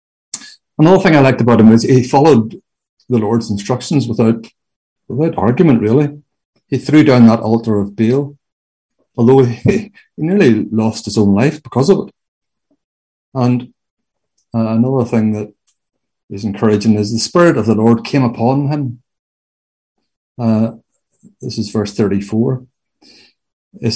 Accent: Irish